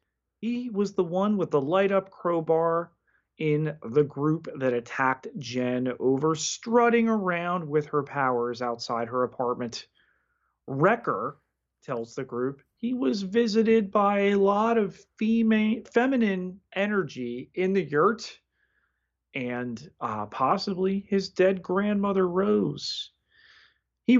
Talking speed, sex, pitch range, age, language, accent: 115 wpm, male, 125-195 Hz, 30-49, English, American